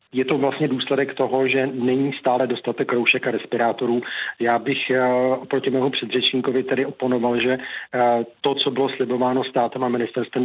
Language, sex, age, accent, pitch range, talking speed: Czech, male, 40-59, native, 120-130 Hz, 155 wpm